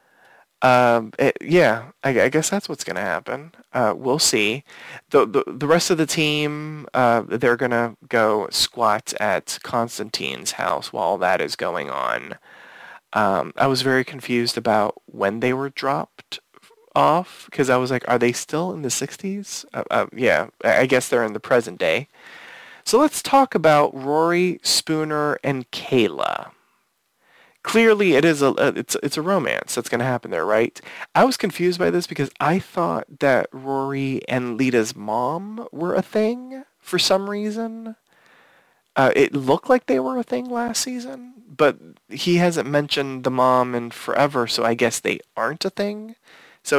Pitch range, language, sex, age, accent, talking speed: 125-195 Hz, English, male, 30-49, American, 170 wpm